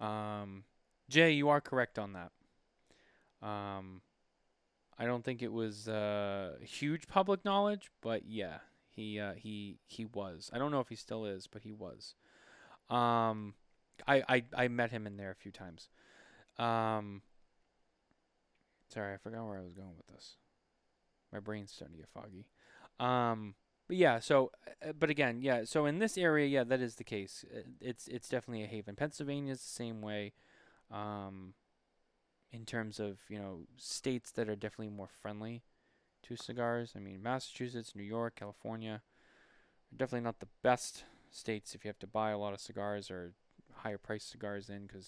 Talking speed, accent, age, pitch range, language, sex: 170 wpm, American, 20-39, 100-125 Hz, English, male